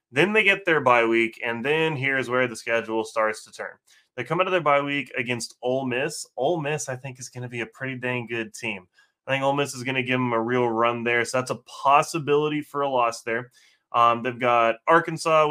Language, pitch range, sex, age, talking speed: English, 115-145 Hz, male, 20-39, 245 wpm